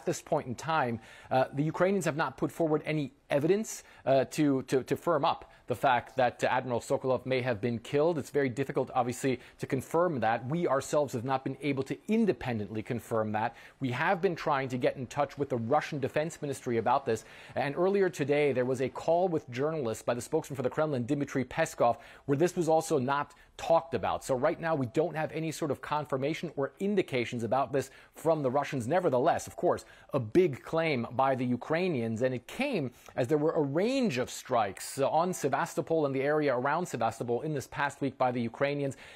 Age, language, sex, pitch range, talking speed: 30-49, English, male, 125-155 Hz, 205 wpm